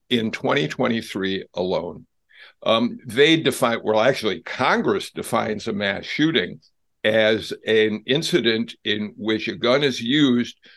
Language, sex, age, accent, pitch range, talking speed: English, male, 60-79, American, 110-150 Hz, 125 wpm